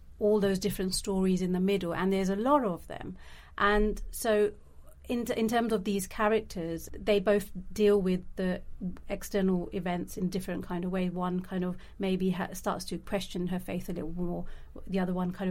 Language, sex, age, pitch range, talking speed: English, female, 40-59, 180-215 Hz, 195 wpm